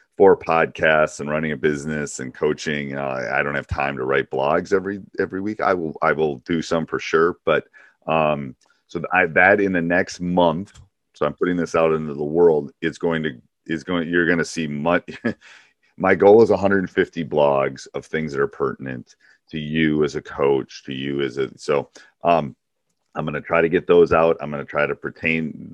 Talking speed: 205 wpm